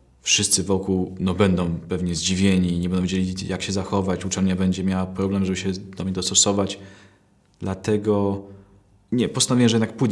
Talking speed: 155 wpm